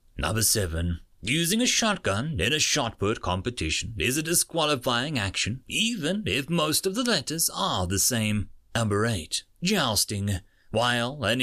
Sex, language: male, English